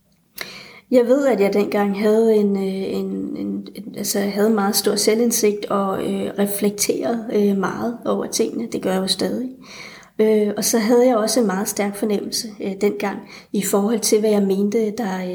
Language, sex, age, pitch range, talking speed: Danish, female, 30-49, 195-225 Hz, 155 wpm